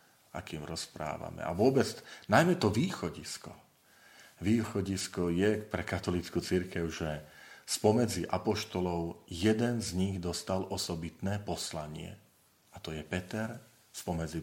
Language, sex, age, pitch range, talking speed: Slovak, male, 40-59, 85-105 Hz, 110 wpm